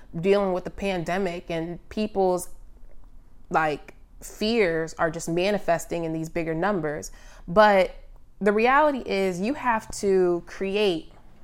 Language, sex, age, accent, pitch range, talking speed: English, female, 20-39, American, 165-205 Hz, 120 wpm